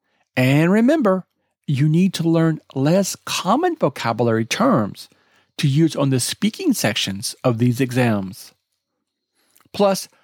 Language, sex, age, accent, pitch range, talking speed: English, male, 50-69, American, 130-190 Hz, 115 wpm